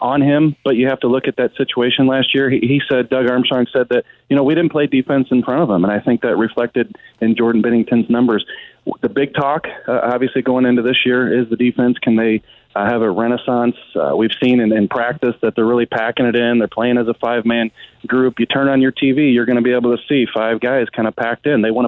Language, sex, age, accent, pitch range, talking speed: English, male, 30-49, American, 120-135 Hz, 260 wpm